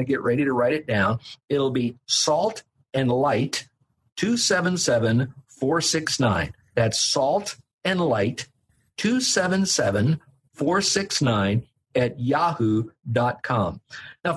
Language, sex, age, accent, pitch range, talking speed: English, male, 50-69, American, 120-155 Hz, 90 wpm